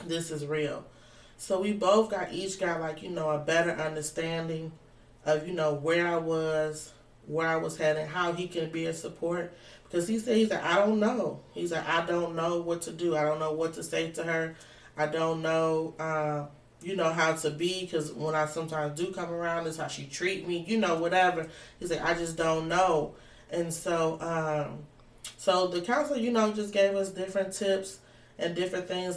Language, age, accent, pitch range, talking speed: English, 30-49, American, 155-185 Hz, 210 wpm